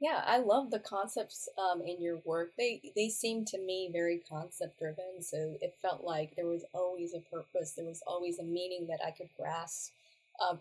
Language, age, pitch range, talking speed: English, 30-49, 170-225 Hz, 205 wpm